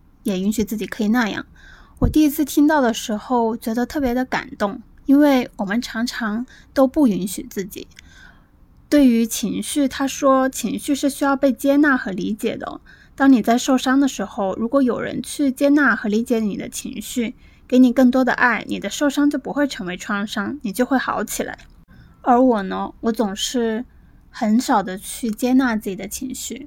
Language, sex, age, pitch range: Chinese, female, 20-39, 215-270 Hz